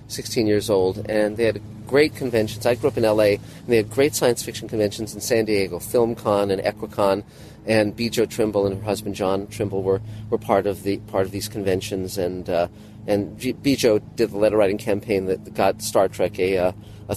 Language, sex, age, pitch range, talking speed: English, male, 40-59, 105-130 Hz, 210 wpm